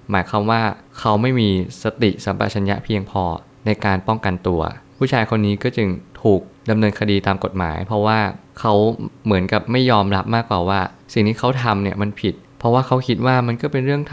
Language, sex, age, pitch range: Thai, male, 20-39, 95-115 Hz